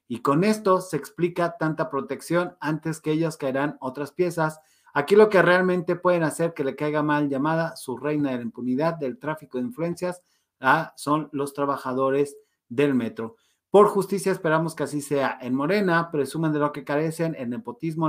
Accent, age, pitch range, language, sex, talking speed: Mexican, 40-59, 140-180 Hz, Spanish, male, 175 wpm